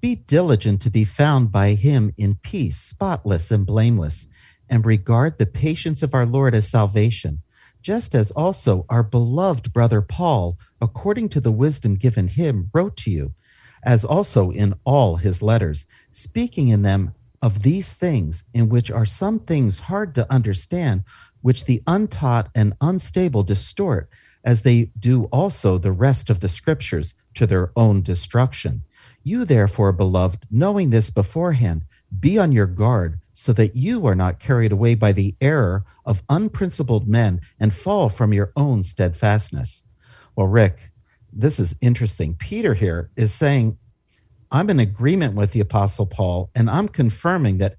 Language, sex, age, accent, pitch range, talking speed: English, male, 50-69, American, 100-135 Hz, 155 wpm